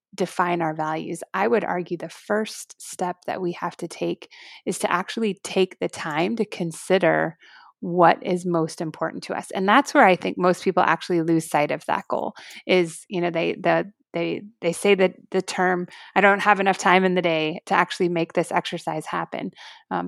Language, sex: English, female